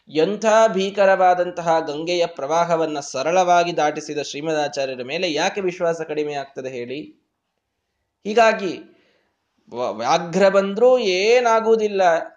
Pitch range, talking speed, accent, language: 130-190 Hz, 80 wpm, native, Kannada